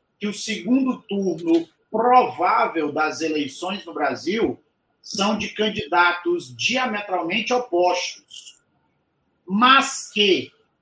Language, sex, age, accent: Portuguese, male, 40-59, Brazilian